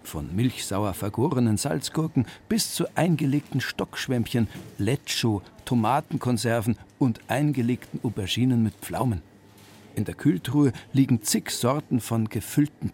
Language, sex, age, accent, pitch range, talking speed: German, male, 50-69, German, 100-130 Hz, 105 wpm